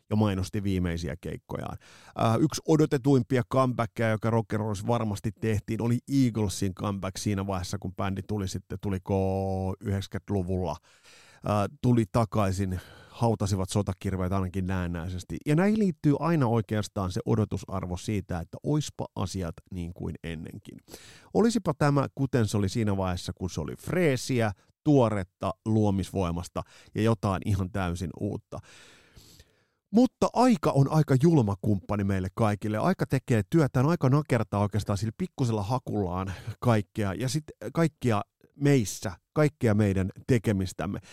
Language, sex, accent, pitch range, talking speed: Finnish, male, native, 95-130 Hz, 125 wpm